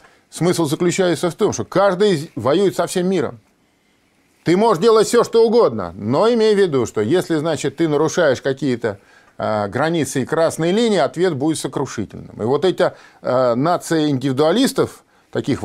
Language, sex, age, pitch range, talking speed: Russian, male, 40-59, 140-210 Hz, 145 wpm